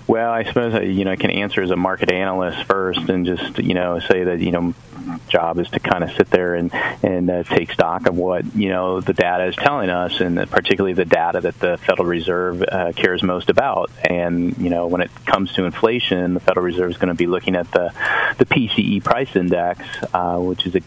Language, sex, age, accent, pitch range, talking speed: English, male, 30-49, American, 85-95 Hz, 235 wpm